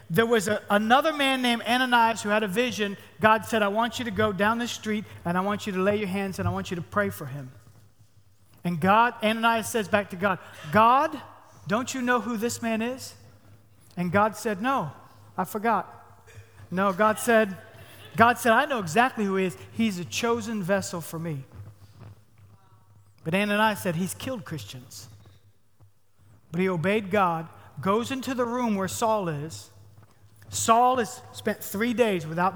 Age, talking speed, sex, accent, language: 40-59, 180 wpm, male, American, English